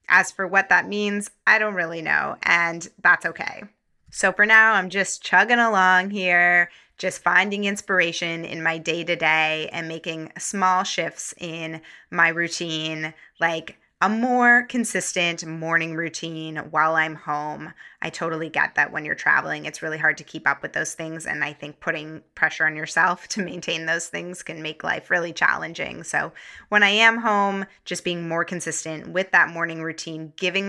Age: 20-39